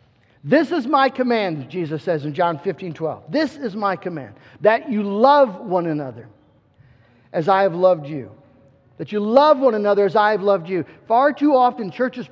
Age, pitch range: 50-69, 160-245 Hz